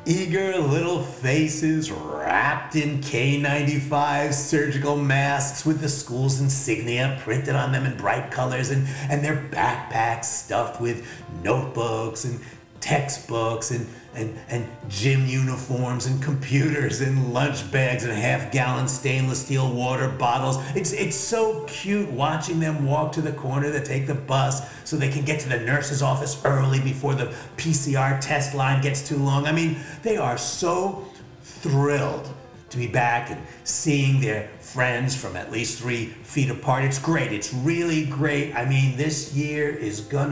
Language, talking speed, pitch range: English, 155 wpm, 125-150 Hz